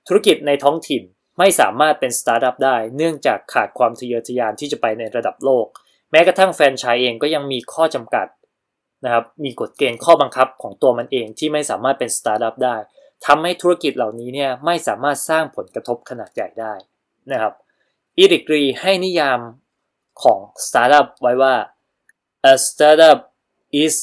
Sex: male